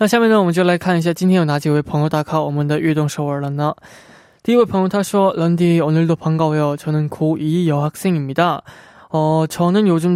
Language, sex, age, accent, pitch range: Korean, male, 20-39, native, 150-190 Hz